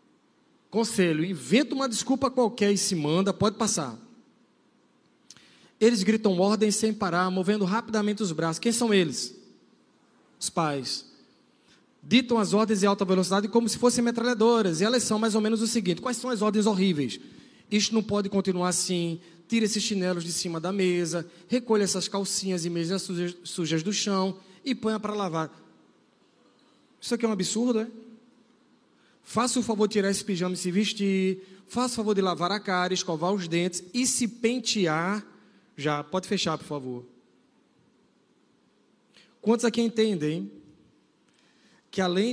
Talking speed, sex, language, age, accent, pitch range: 155 wpm, male, Portuguese, 20-39, Brazilian, 175-220 Hz